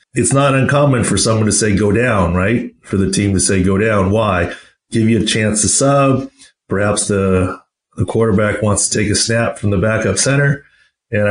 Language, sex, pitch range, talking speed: English, male, 100-120 Hz, 200 wpm